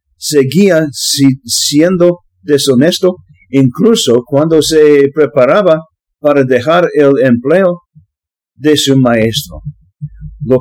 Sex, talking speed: male, 85 wpm